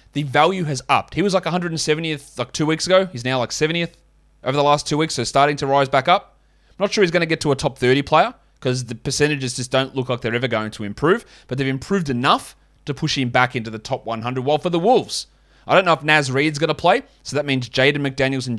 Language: English